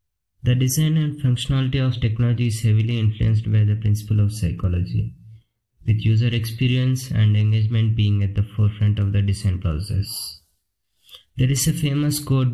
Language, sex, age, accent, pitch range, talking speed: English, male, 20-39, Indian, 105-125 Hz, 155 wpm